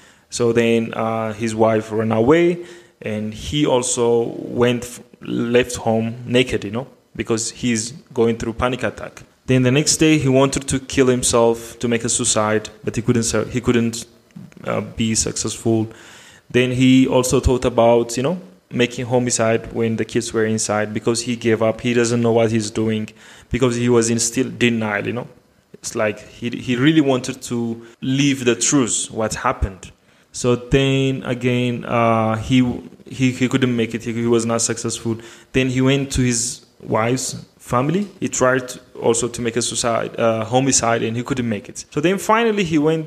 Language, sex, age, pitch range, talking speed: English, male, 20-39, 115-130 Hz, 180 wpm